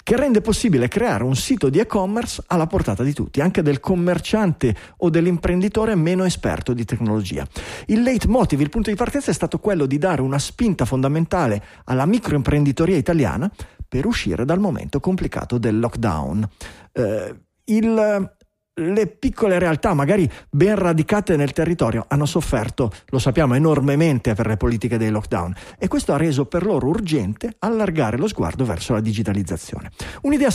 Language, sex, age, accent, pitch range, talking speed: Italian, male, 40-59, native, 130-205 Hz, 155 wpm